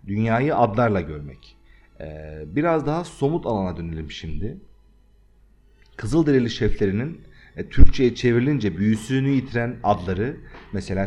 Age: 40-59